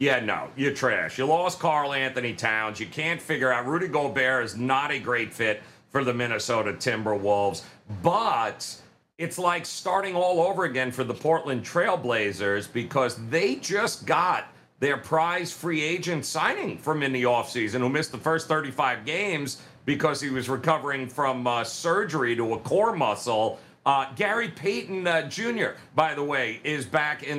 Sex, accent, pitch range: male, American, 130-170 Hz